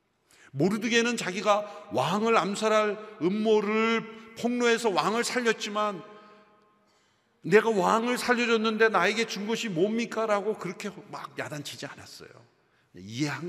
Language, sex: Korean, male